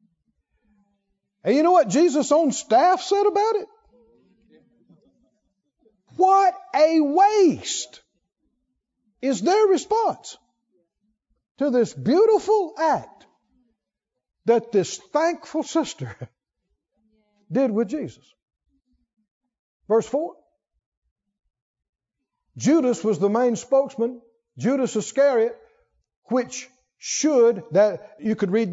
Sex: male